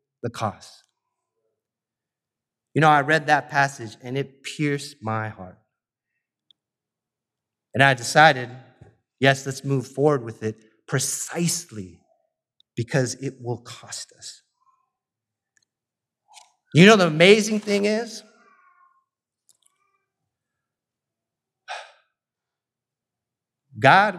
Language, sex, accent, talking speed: English, male, American, 85 wpm